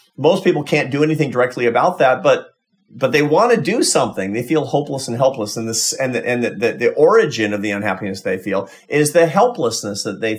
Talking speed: 225 wpm